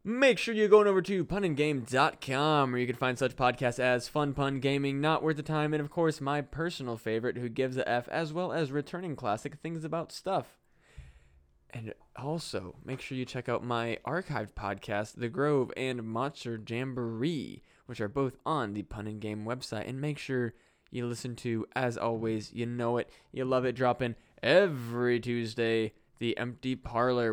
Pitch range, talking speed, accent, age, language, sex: 120-150 Hz, 185 wpm, American, 20-39, English, male